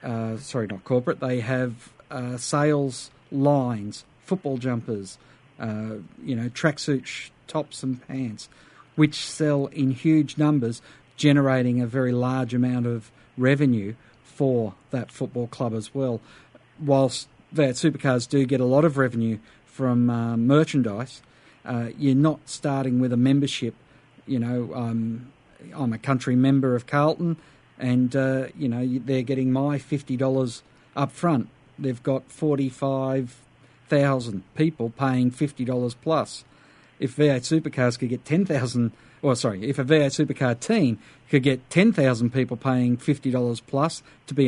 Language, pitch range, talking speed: English, 125-140 Hz, 140 wpm